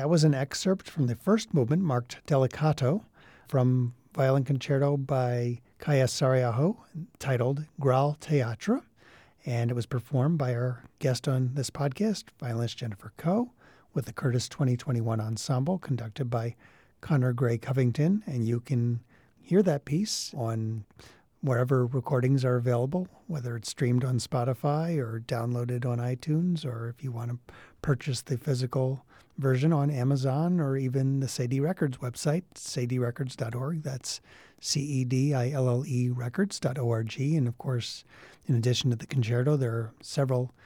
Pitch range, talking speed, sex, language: 120-150 Hz, 140 wpm, male, English